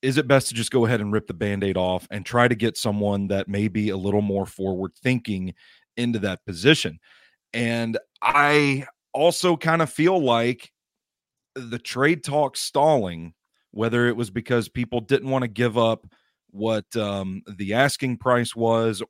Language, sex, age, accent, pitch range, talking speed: English, male, 30-49, American, 105-135 Hz, 175 wpm